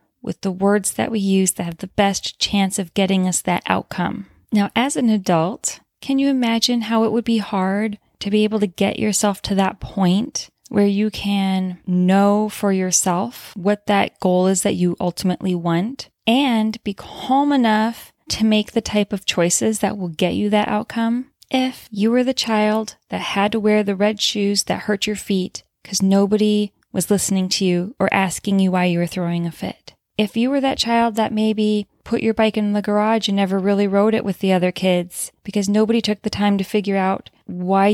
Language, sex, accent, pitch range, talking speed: English, female, American, 185-215 Hz, 205 wpm